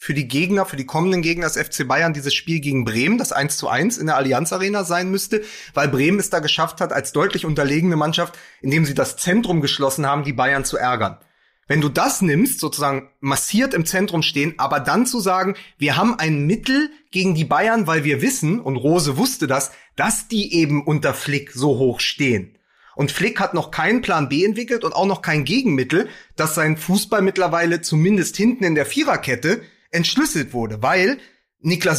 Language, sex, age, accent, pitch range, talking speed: German, male, 30-49, German, 145-195 Hz, 195 wpm